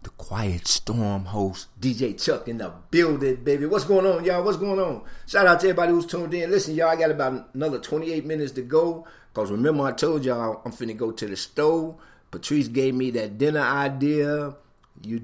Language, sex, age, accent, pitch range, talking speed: English, male, 50-69, American, 100-150 Hz, 205 wpm